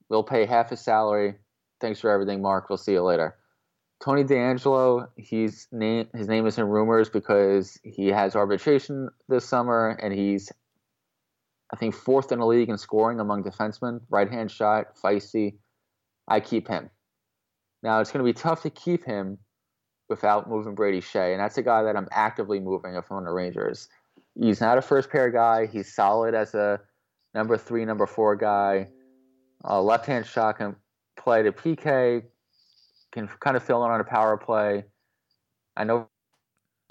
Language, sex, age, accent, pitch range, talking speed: English, male, 20-39, American, 100-120 Hz, 165 wpm